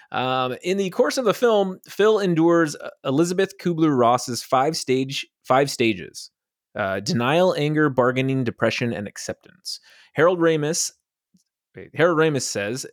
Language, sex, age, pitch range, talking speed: English, male, 20-39, 110-155 Hz, 130 wpm